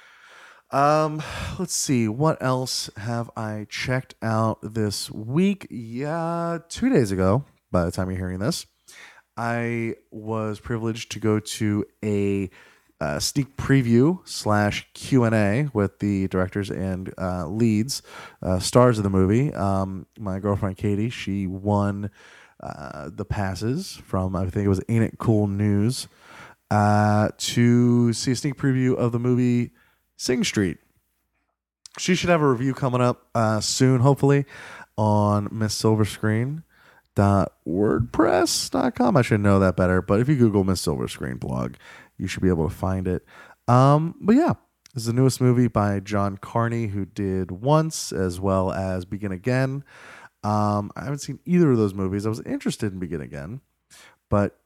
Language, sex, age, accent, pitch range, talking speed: English, male, 20-39, American, 100-125 Hz, 150 wpm